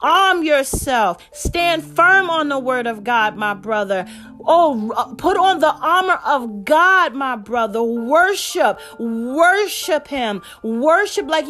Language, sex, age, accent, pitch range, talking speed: English, female, 30-49, American, 275-335 Hz, 130 wpm